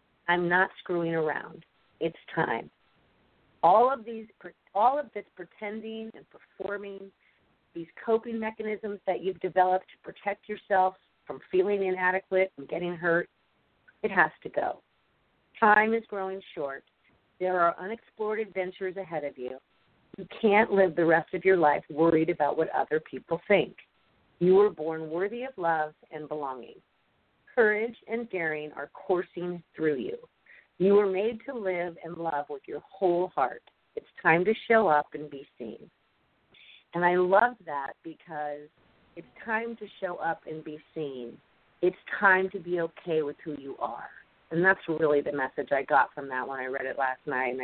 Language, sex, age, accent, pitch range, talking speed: English, female, 40-59, American, 160-205 Hz, 165 wpm